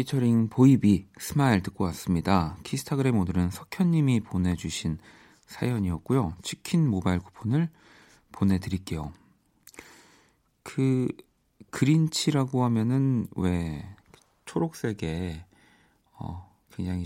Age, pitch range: 40-59, 90-120 Hz